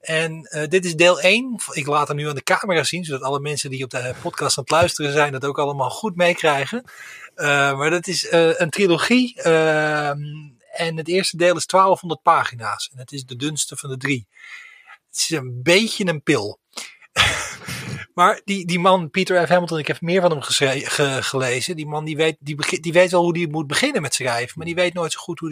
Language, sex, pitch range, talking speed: Dutch, male, 145-180 Hz, 215 wpm